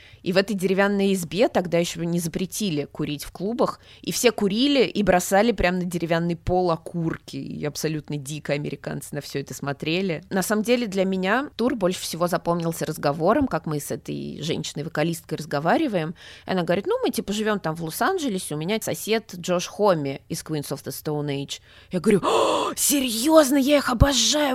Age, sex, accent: 20-39, female, native